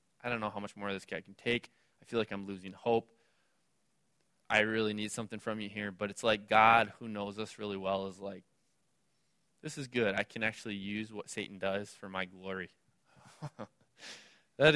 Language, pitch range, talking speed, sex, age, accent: English, 105-130 Hz, 200 wpm, male, 20-39, American